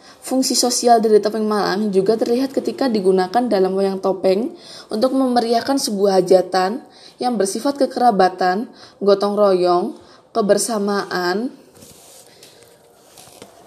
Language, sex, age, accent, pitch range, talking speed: Indonesian, female, 20-39, native, 195-245 Hz, 95 wpm